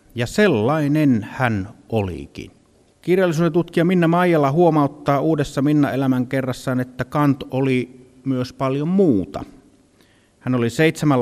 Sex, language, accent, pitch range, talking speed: male, Finnish, native, 110-145 Hz, 110 wpm